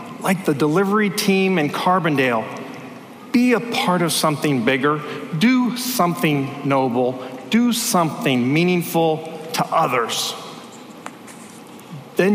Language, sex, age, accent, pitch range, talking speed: English, male, 40-59, American, 145-210 Hz, 100 wpm